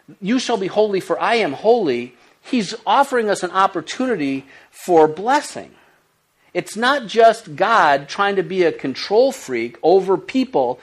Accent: American